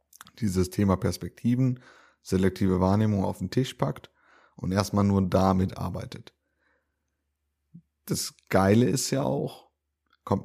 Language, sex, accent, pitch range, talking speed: German, male, German, 90-110 Hz, 115 wpm